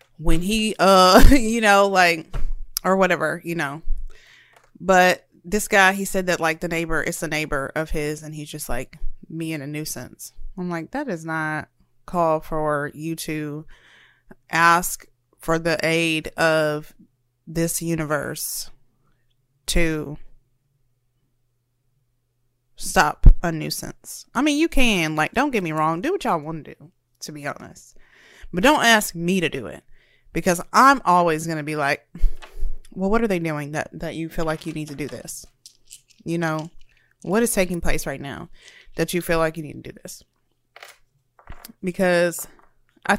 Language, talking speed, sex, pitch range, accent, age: English, 165 wpm, female, 150-180 Hz, American, 20-39